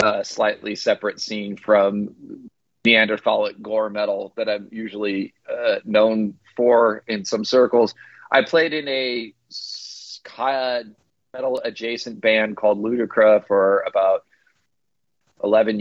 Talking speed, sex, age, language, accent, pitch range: 115 wpm, male, 30-49, English, American, 105-125 Hz